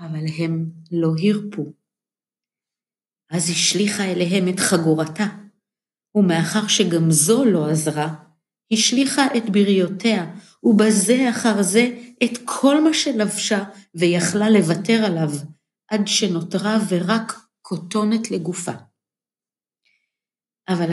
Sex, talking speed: female, 95 wpm